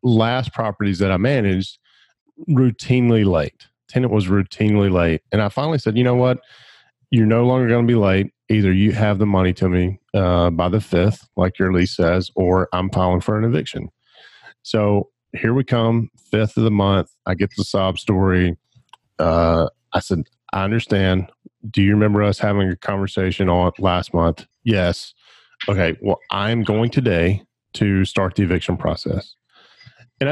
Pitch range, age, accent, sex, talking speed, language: 90-110 Hz, 40-59, American, male, 170 wpm, English